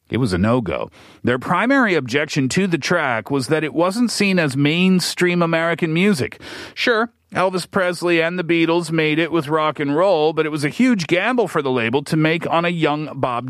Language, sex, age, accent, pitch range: Korean, male, 40-59, American, 135-185 Hz